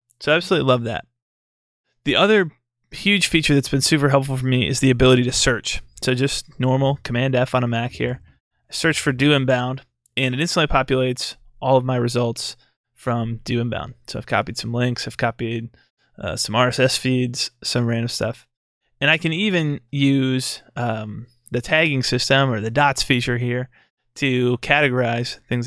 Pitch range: 120-145 Hz